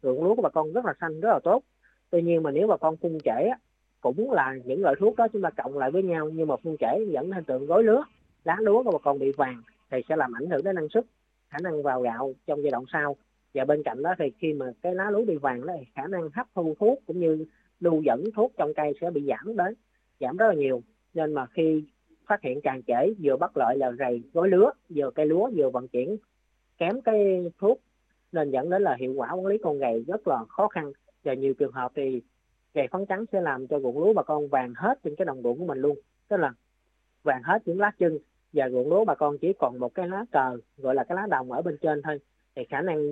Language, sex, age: Vietnamese, female, 20-39